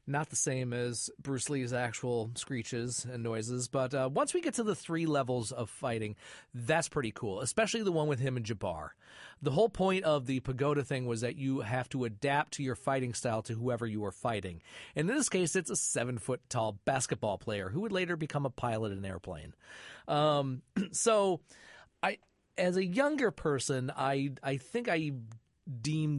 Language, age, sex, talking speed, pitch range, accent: English, 40-59, male, 190 wpm, 115-160 Hz, American